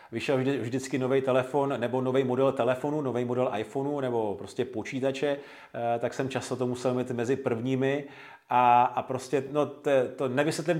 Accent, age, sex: native, 40-59, male